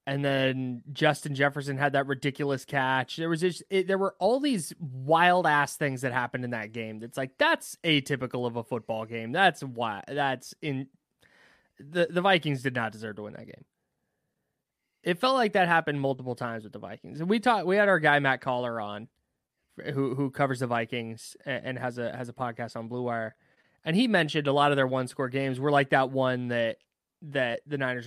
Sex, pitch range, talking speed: male, 120-160 Hz, 210 wpm